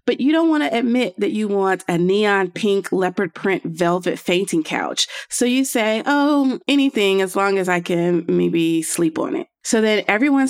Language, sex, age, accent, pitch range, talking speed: English, female, 30-49, American, 175-220 Hz, 195 wpm